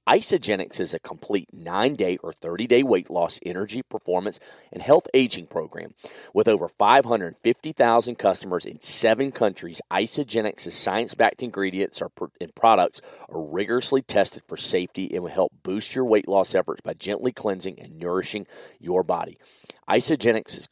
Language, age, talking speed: English, 40-59, 150 wpm